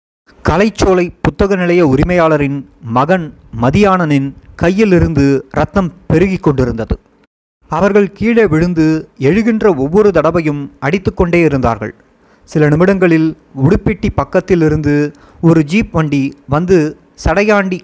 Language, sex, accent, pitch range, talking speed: Tamil, male, native, 135-180 Hz, 90 wpm